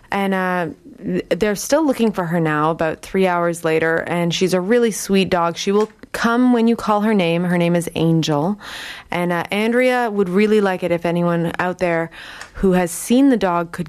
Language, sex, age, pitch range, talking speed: English, female, 20-39, 170-230 Hz, 205 wpm